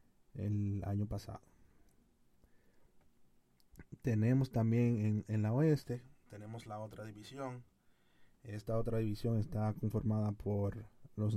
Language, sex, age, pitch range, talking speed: Spanish, male, 30-49, 100-115 Hz, 105 wpm